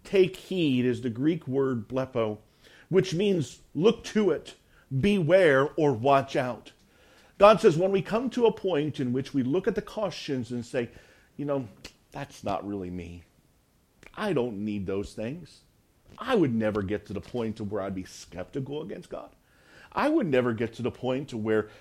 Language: English